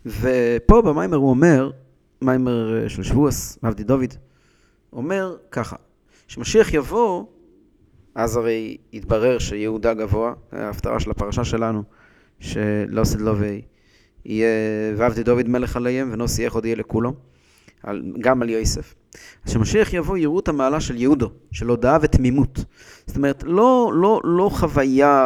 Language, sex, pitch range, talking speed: English, male, 110-145 Hz, 95 wpm